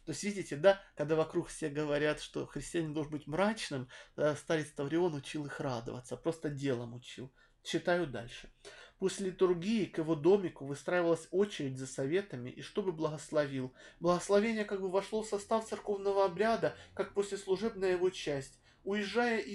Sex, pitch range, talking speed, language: male, 155-205 Hz, 155 wpm, Russian